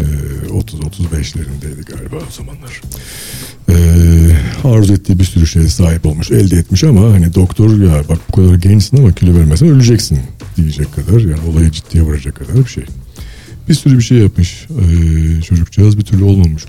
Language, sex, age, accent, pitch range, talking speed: Turkish, male, 60-79, native, 85-115 Hz, 160 wpm